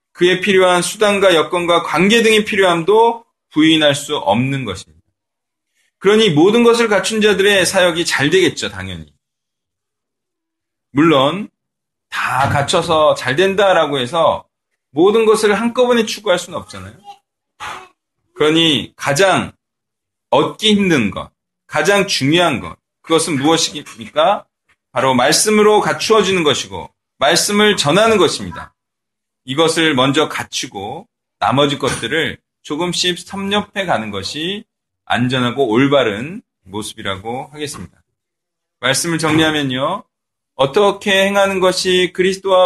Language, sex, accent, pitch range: Korean, male, native, 135-200 Hz